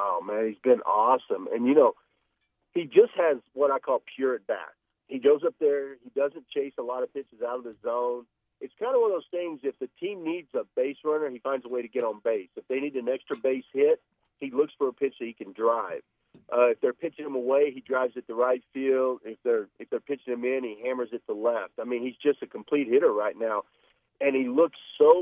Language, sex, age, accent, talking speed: English, male, 50-69, American, 255 wpm